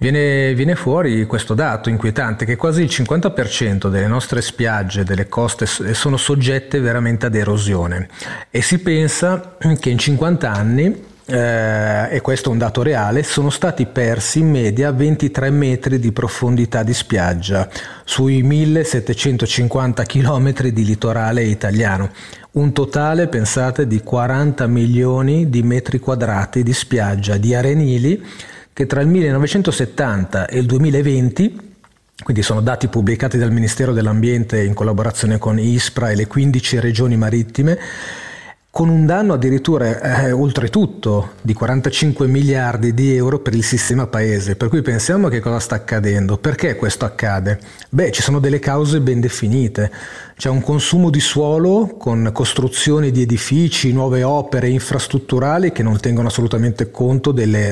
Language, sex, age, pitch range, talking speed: Italian, male, 40-59, 110-140 Hz, 140 wpm